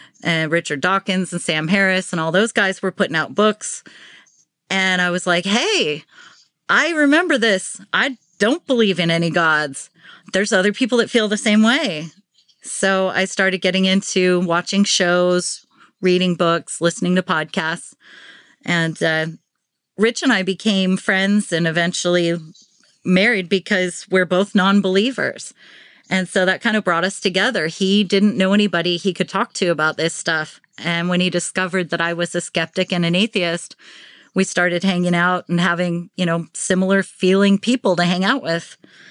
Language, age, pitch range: English, 40-59, 175-215 Hz